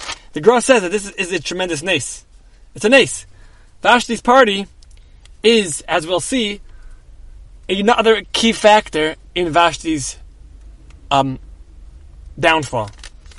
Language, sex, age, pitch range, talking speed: English, male, 20-39, 125-200 Hz, 110 wpm